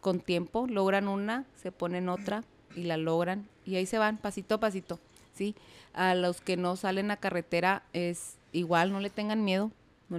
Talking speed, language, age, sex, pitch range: 190 wpm, Spanish, 30-49, female, 175-220 Hz